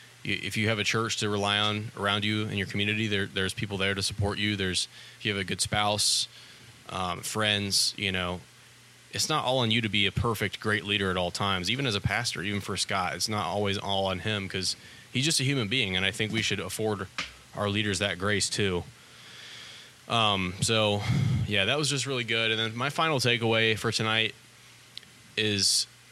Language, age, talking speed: English, 20-39, 210 wpm